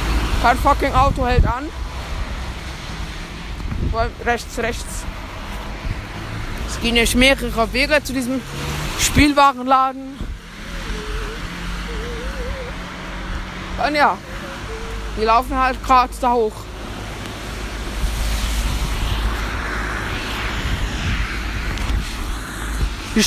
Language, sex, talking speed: German, female, 60 wpm